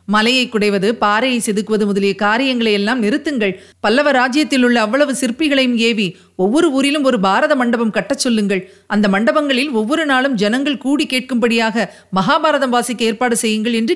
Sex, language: female, Tamil